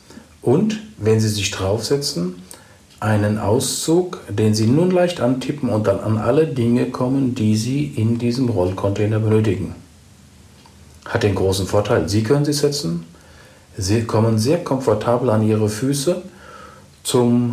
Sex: male